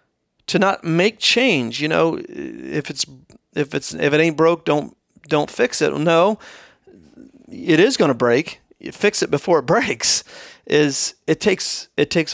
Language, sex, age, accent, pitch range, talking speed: English, male, 40-59, American, 135-165 Hz, 170 wpm